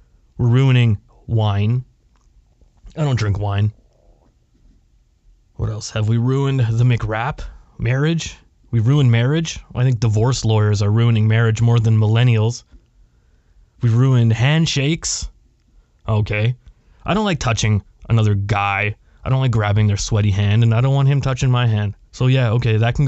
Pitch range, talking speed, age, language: 110-130 Hz, 155 wpm, 20-39, English